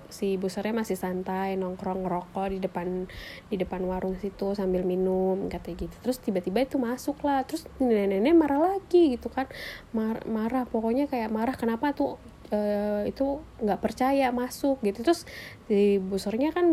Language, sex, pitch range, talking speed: Indonesian, female, 205-290 Hz, 150 wpm